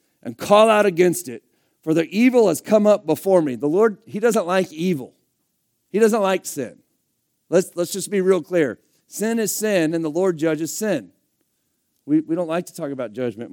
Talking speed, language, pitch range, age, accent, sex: 200 wpm, English, 150-195 Hz, 50-69, American, male